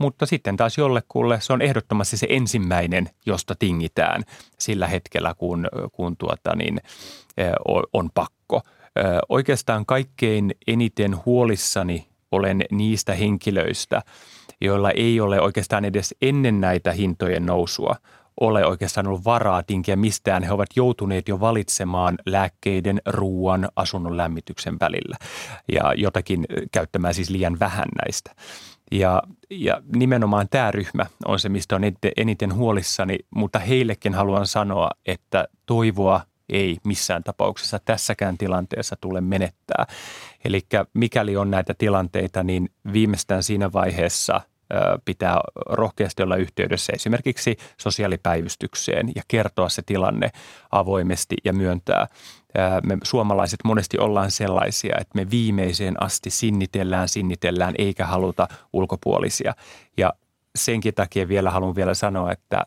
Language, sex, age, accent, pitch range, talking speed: Finnish, male, 30-49, native, 95-110 Hz, 120 wpm